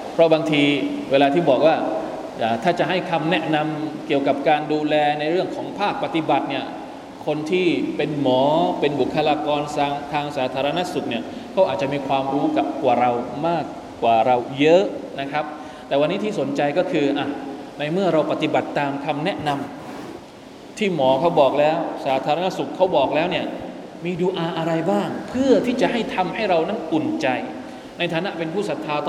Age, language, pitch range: 20-39, Thai, 145-180 Hz